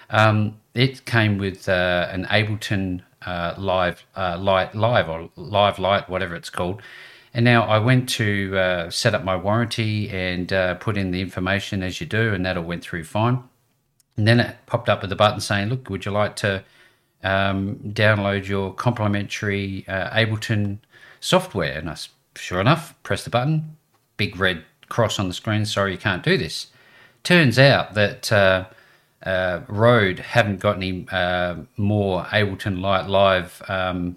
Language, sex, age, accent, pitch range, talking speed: English, male, 40-59, Australian, 95-115 Hz, 170 wpm